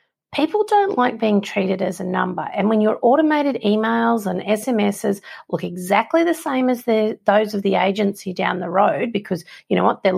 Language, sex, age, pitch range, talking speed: English, female, 40-59, 190-255 Hz, 190 wpm